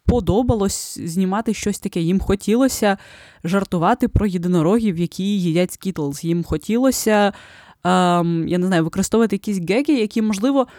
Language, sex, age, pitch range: Ukrainian, female, 20-39, 170-220 Hz